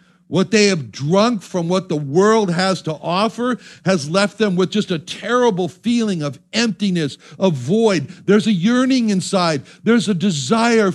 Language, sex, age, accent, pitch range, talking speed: English, male, 60-79, American, 165-220 Hz, 165 wpm